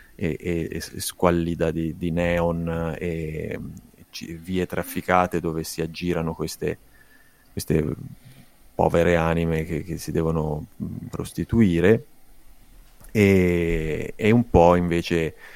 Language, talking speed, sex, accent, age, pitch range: Italian, 110 wpm, male, native, 30-49, 80-95 Hz